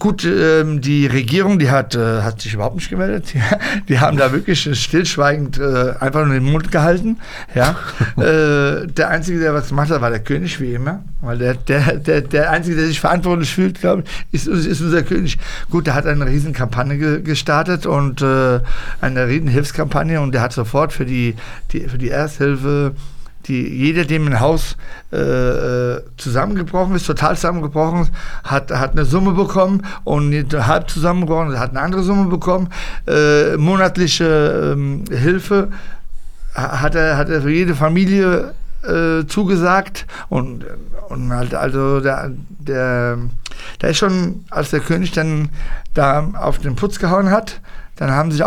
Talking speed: 160 wpm